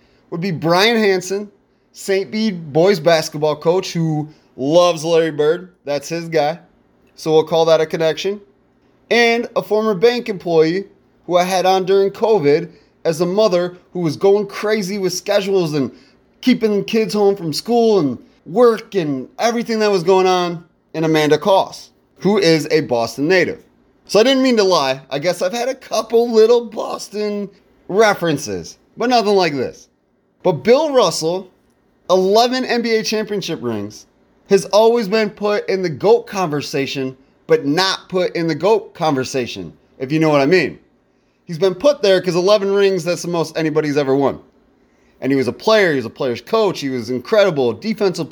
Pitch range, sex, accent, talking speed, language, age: 150-210 Hz, male, American, 170 wpm, English, 30-49